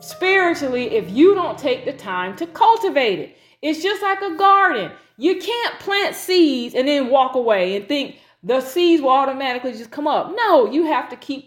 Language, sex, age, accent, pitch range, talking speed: English, female, 30-49, American, 255-330 Hz, 195 wpm